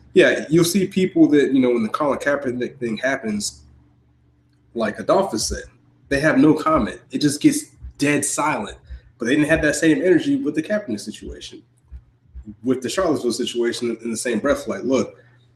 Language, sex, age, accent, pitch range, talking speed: English, male, 20-39, American, 110-160 Hz, 175 wpm